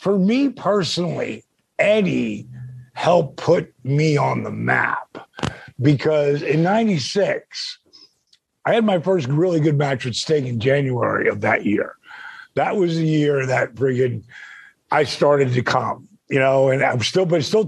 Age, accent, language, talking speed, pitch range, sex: 50-69, American, English, 155 wpm, 145-185 Hz, male